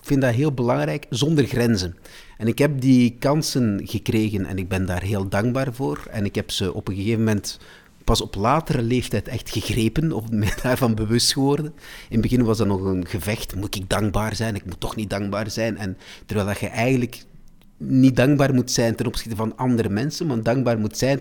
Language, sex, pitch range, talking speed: Dutch, male, 105-130 Hz, 210 wpm